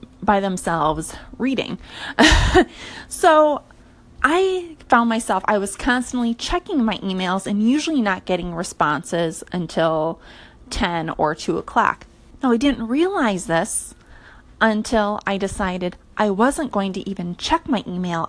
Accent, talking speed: American, 130 wpm